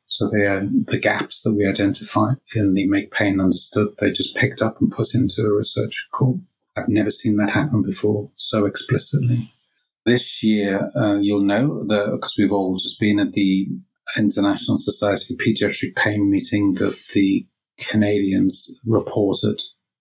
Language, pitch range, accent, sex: English, 100-120 Hz, British, male